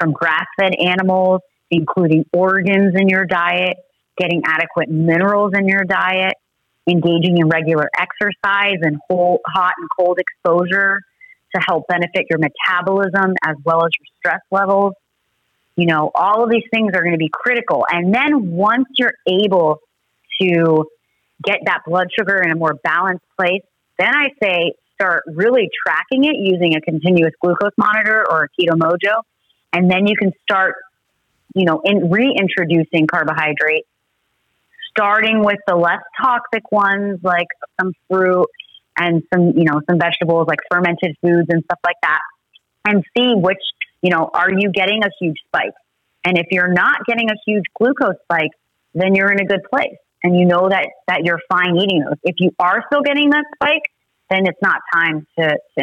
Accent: American